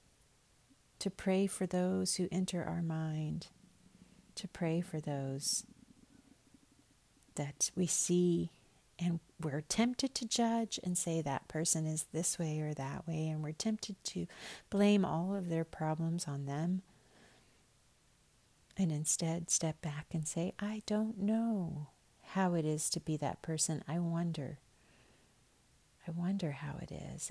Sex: female